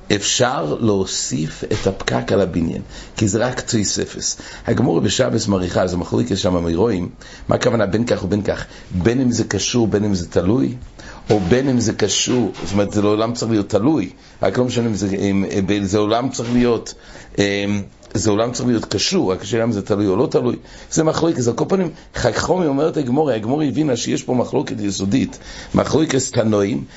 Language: English